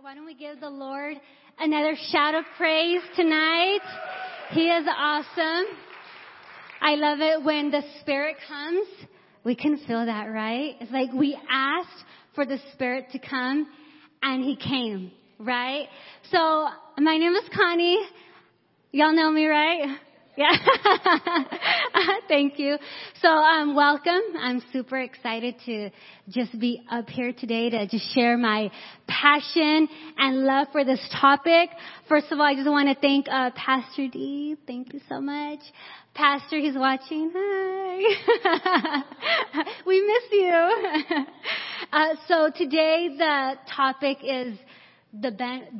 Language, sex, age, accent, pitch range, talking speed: English, female, 20-39, American, 265-330 Hz, 135 wpm